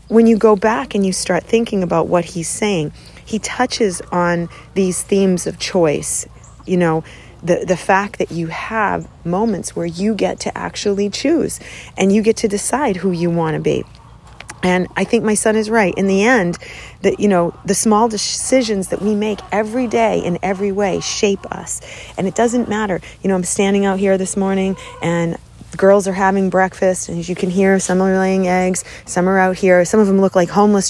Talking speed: 210 wpm